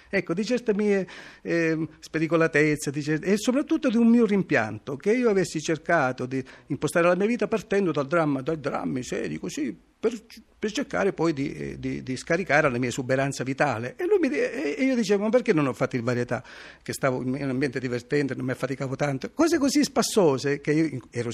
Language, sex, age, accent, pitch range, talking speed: Italian, male, 50-69, native, 130-205 Hz, 195 wpm